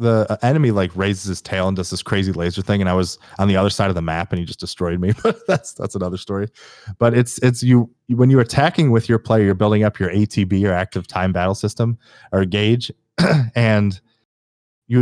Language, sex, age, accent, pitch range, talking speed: English, male, 20-39, American, 95-115 Hz, 225 wpm